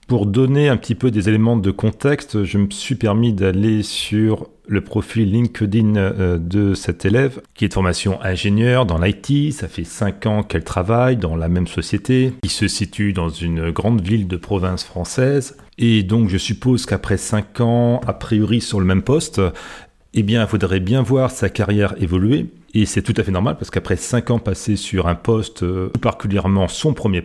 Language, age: French, 40-59